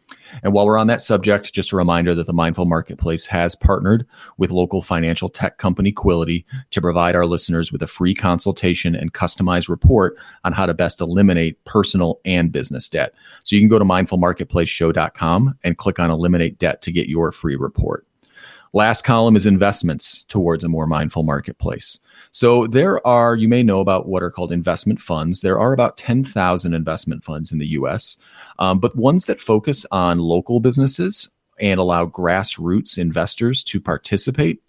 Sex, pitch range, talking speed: male, 85-105 Hz, 175 wpm